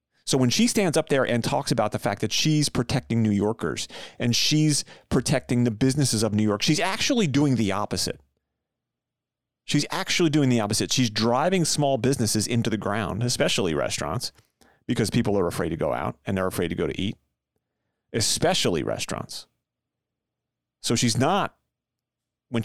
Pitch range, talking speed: 110-140 Hz, 165 wpm